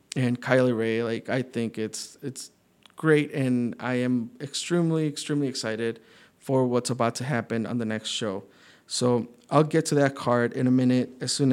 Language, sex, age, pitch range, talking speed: English, male, 20-39, 120-145 Hz, 180 wpm